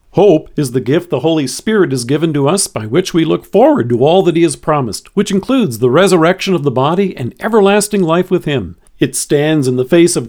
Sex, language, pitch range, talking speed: male, English, 135-190 Hz, 235 wpm